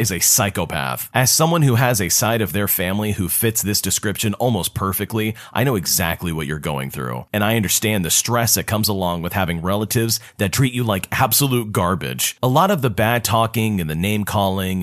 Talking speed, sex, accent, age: 205 wpm, male, American, 30-49